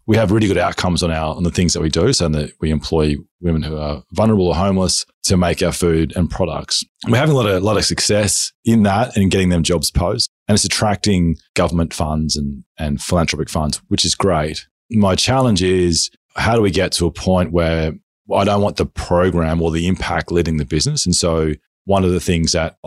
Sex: male